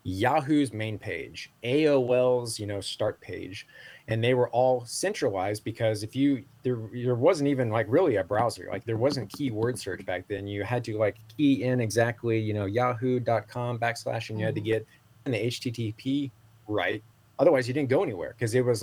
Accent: American